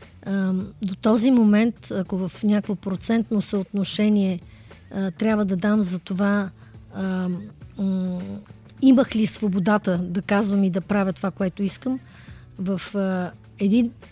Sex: female